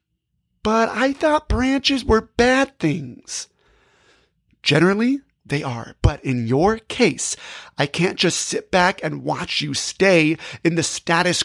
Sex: male